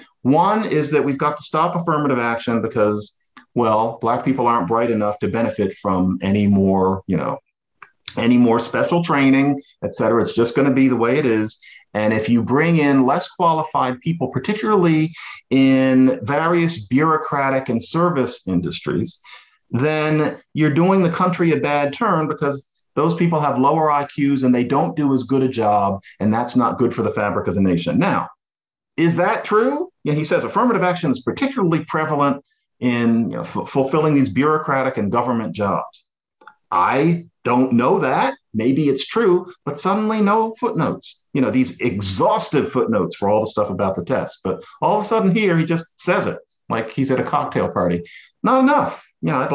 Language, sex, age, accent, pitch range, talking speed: English, male, 50-69, American, 120-165 Hz, 180 wpm